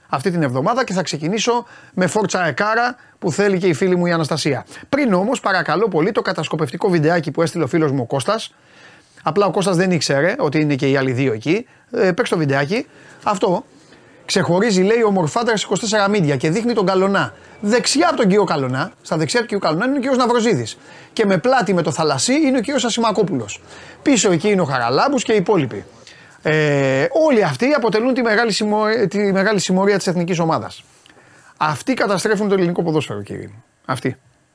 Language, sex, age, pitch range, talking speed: Greek, male, 30-49, 150-215 Hz, 195 wpm